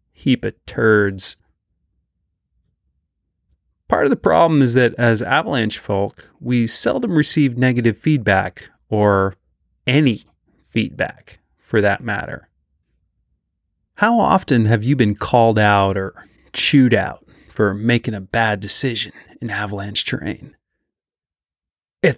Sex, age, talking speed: male, 30-49, 110 wpm